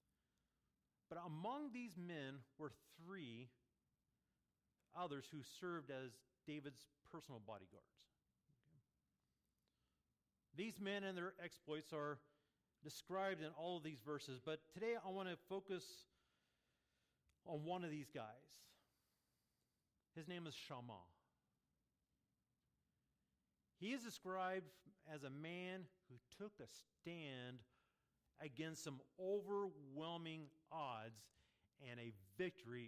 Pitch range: 115-175 Hz